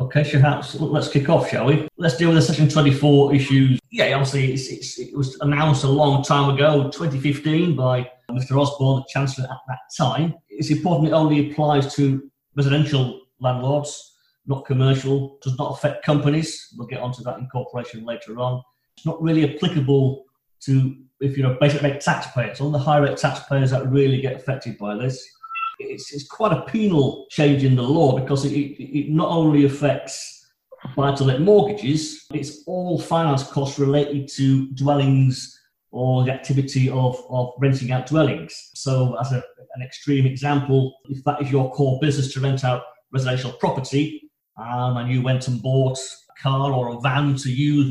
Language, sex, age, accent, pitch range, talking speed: English, male, 40-59, British, 130-150 Hz, 175 wpm